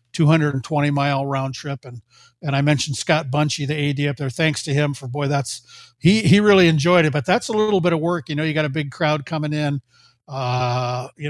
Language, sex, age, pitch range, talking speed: English, male, 50-69, 140-165 Hz, 245 wpm